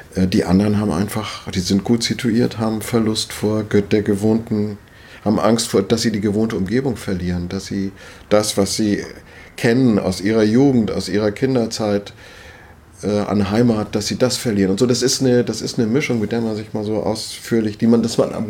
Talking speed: 195 wpm